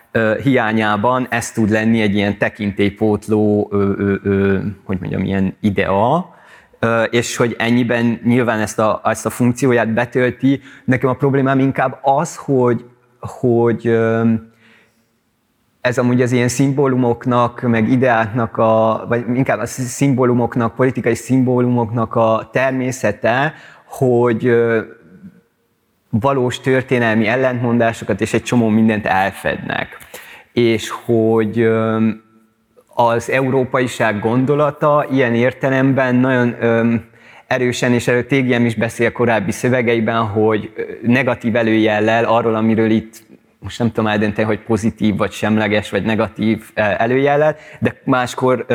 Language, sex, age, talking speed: Hungarian, male, 30-49, 105 wpm